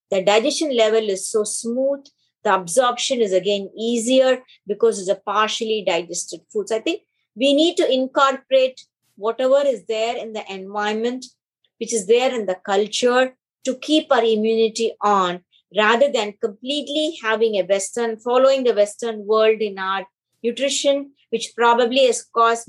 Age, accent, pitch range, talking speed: 20-39, Indian, 200-255 Hz, 155 wpm